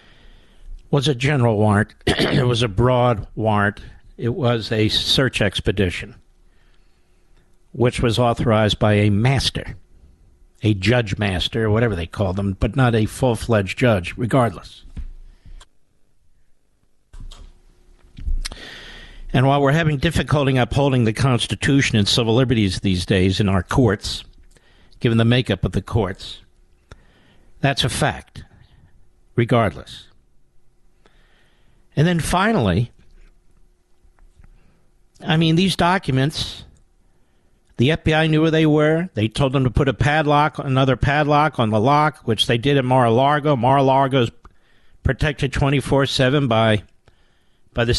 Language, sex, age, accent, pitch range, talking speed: English, male, 60-79, American, 95-140 Hz, 125 wpm